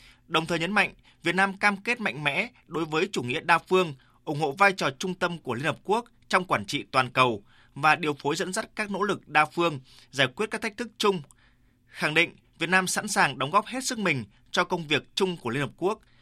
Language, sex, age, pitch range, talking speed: Vietnamese, male, 20-39, 130-190 Hz, 245 wpm